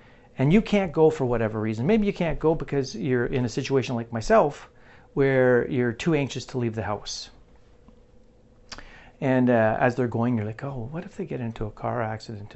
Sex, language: male, English